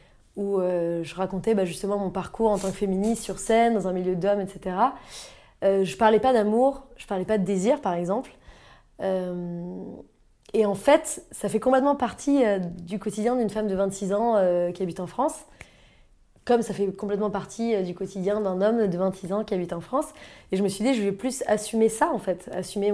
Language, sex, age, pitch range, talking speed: French, female, 20-39, 190-240 Hz, 200 wpm